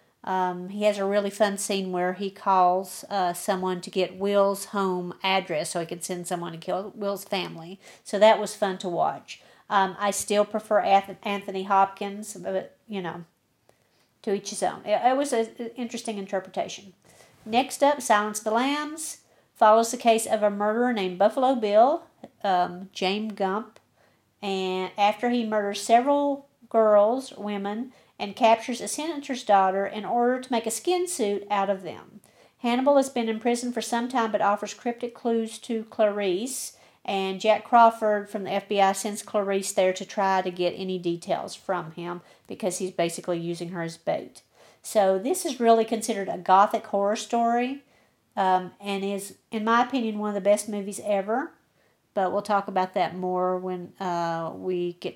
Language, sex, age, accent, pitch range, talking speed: English, female, 50-69, American, 190-225 Hz, 170 wpm